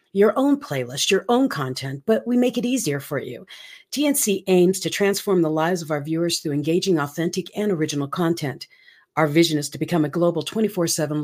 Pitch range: 145-200 Hz